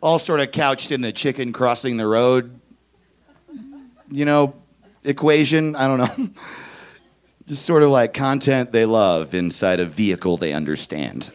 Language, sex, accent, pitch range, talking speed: English, male, American, 95-140 Hz, 150 wpm